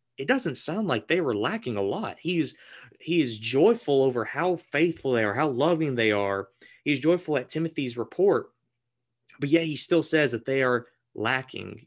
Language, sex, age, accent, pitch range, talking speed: English, male, 20-39, American, 115-140 Hz, 185 wpm